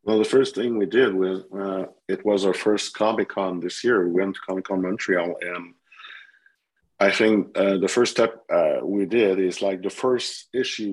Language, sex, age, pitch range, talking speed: English, male, 50-69, 95-105 Hz, 200 wpm